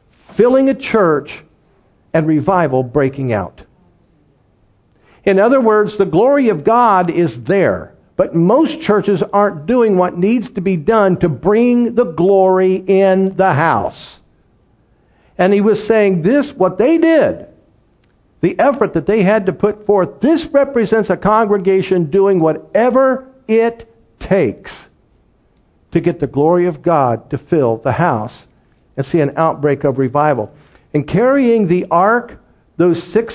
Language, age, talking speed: English, 50-69, 140 wpm